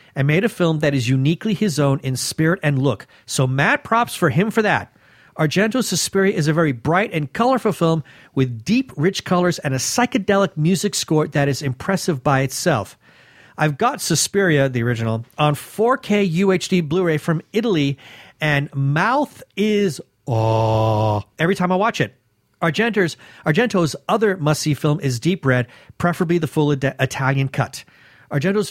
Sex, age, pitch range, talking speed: male, 40-59, 140-195 Hz, 160 wpm